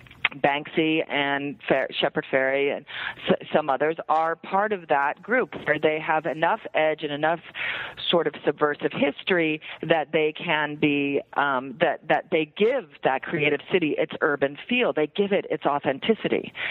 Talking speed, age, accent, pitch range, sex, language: 160 wpm, 40-59, American, 145-185 Hz, female, English